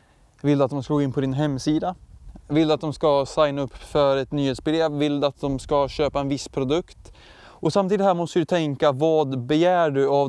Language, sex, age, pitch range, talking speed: Swedish, male, 20-39, 135-160 Hz, 210 wpm